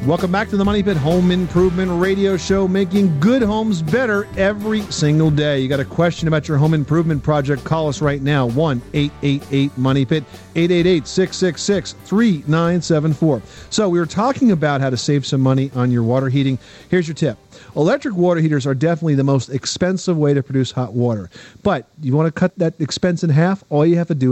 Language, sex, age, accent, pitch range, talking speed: English, male, 40-59, American, 135-170 Hz, 190 wpm